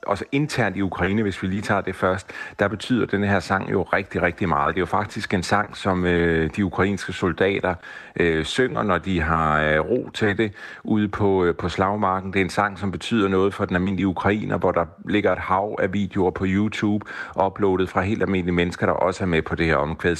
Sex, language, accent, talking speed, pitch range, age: male, Danish, native, 215 wpm, 85-105 Hz, 40-59